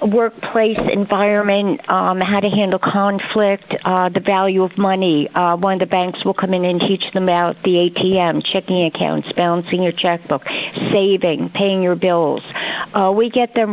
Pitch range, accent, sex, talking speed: 185-205 Hz, American, female, 175 wpm